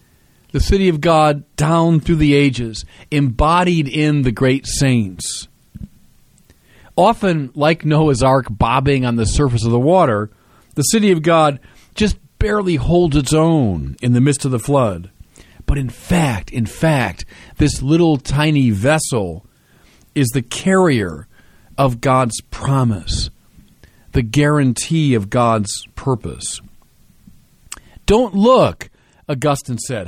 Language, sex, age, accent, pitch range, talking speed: English, male, 40-59, American, 115-165 Hz, 125 wpm